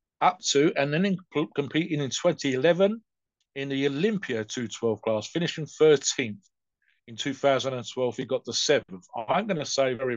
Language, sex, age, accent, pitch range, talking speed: English, male, 50-69, British, 110-135 Hz, 155 wpm